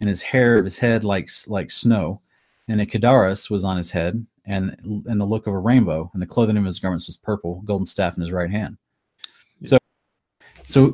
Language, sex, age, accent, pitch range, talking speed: English, male, 30-49, American, 105-135 Hz, 210 wpm